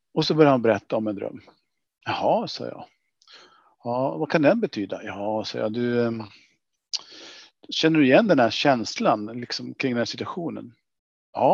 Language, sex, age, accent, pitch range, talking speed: Swedish, male, 50-69, Norwegian, 110-135 Hz, 155 wpm